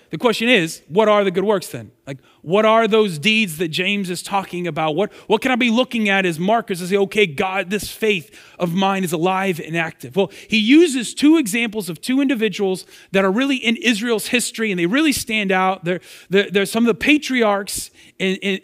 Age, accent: 30-49, American